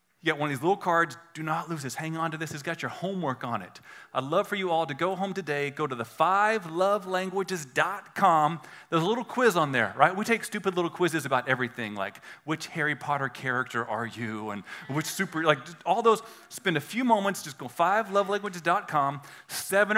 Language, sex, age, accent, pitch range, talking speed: English, male, 30-49, American, 145-200 Hz, 205 wpm